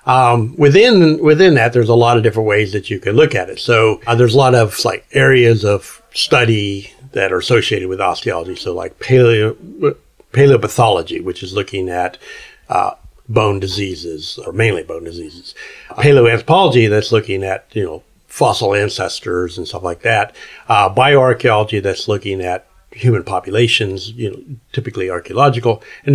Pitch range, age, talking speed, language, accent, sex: 100-135 Hz, 60-79, 160 wpm, English, American, male